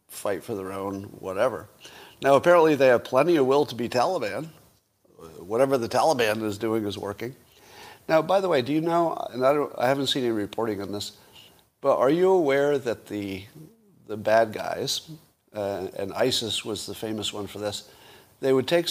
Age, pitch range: 50-69, 100-135 Hz